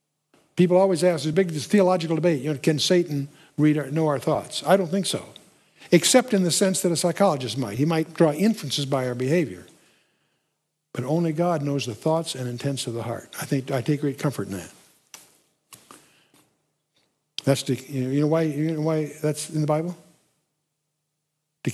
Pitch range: 145-185 Hz